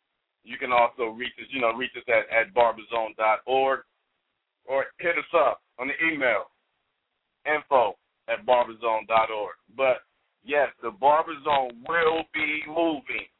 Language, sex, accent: English, male, American